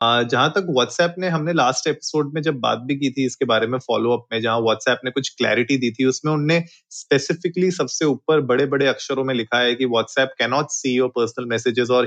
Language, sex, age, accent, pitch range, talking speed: Hindi, male, 30-49, native, 120-145 Hz, 210 wpm